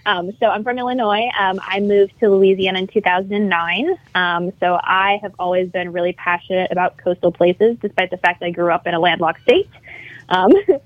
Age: 20-39